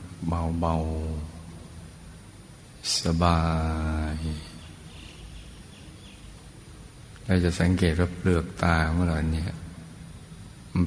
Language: Thai